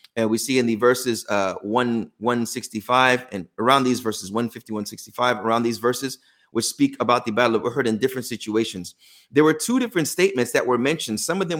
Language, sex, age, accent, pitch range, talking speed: English, male, 30-49, American, 115-140 Hz, 195 wpm